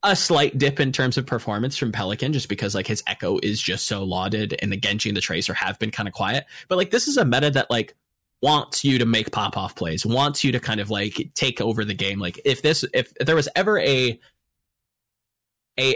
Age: 20-39